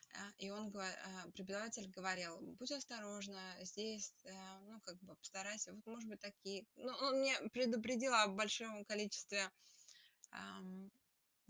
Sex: female